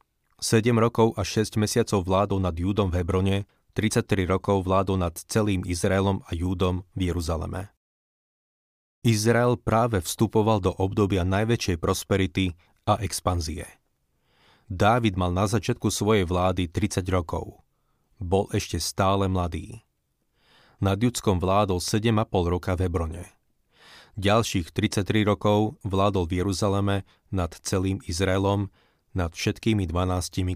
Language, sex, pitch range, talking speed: Slovak, male, 90-110 Hz, 120 wpm